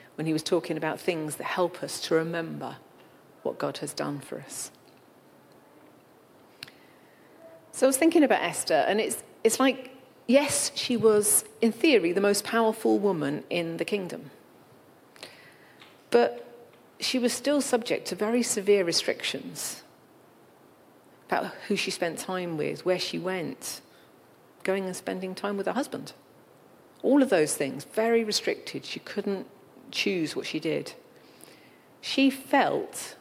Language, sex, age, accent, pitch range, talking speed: English, female, 40-59, British, 170-225 Hz, 140 wpm